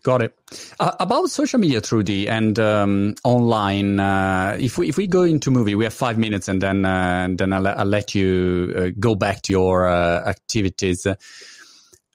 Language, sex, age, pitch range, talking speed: Italian, male, 40-59, 100-130 Hz, 190 wpm